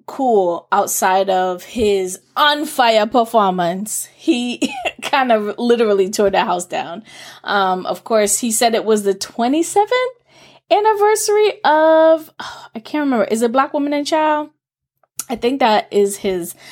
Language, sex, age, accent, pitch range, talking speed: English, female, 20-39, American, 190-245 Hz, 145 wpm